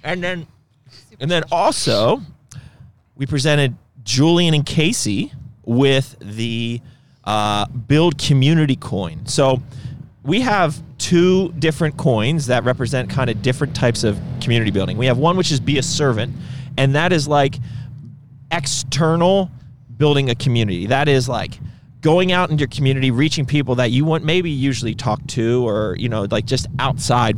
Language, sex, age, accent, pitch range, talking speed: English, male, 30-49, American, 115-145 Hz, 155 wpm